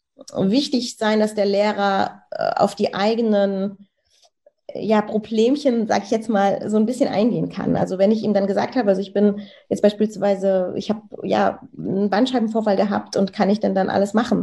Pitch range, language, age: 190-230 Hz, German, 30-49